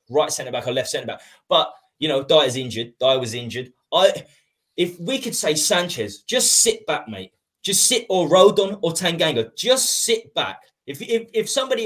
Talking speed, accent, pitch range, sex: 195 wpm, British, 150-210 Hz, male